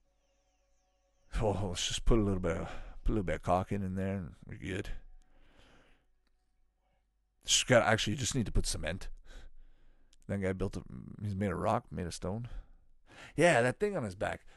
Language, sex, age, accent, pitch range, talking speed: English, male, 50-69, American, 95-130 Hz, 185 wpm